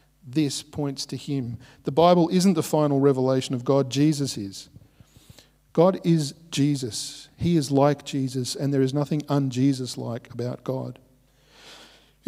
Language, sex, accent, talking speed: English, male, Australian, 140 wpm